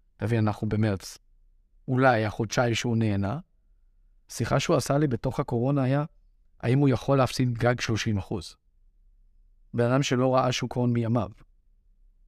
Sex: male